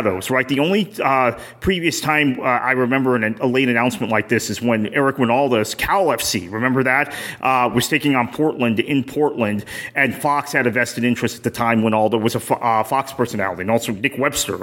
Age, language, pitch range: 30-49, English, 115-140 Hz